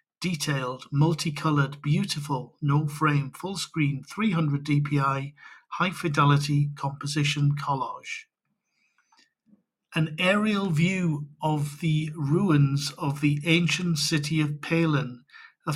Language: English